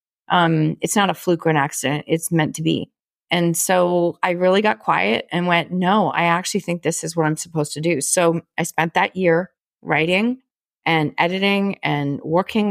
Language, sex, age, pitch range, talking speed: English, female, 30-49, 165-200 Hz, 195 wpm